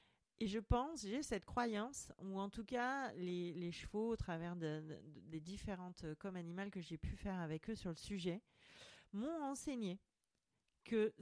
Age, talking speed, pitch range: 40-59, 185 wpm, 180-225 Hz